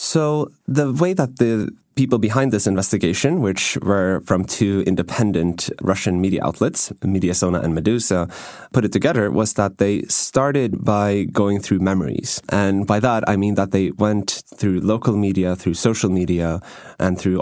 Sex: male